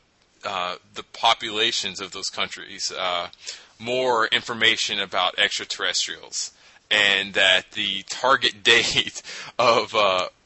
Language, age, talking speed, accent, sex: English, 20-39, 105 wpm, American, male